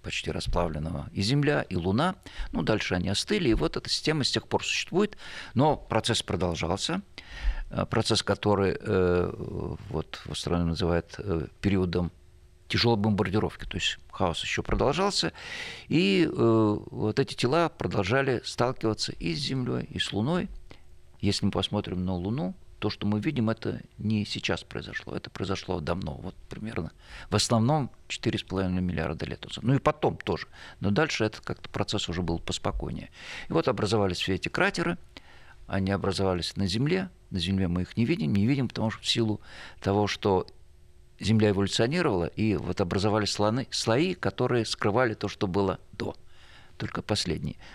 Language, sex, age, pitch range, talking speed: Russian, male, 50-69, 90-115 Hz, 150 wpm